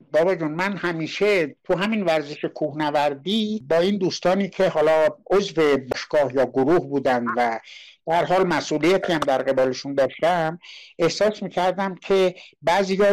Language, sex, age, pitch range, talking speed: Persian, male, 60-79, 145-195 Hz, 130 wpm